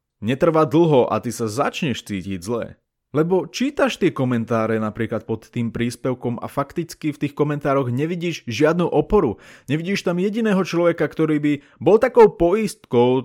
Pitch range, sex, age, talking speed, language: 120-155 Hz, male, 20-39, 150 wpm, Slovak